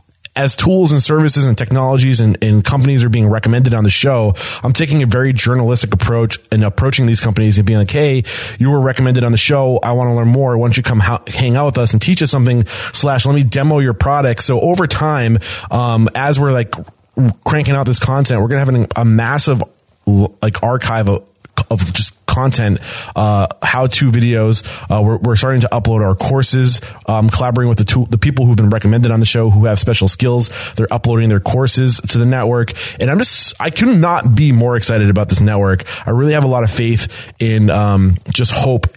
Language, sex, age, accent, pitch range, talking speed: English, male, 20-39, American, 110-130 Hz, 215 wpm